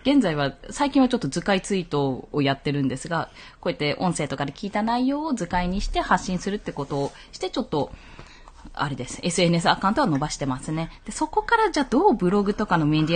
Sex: female